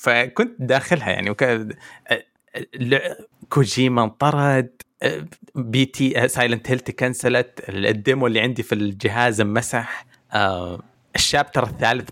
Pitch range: 115-150 Hz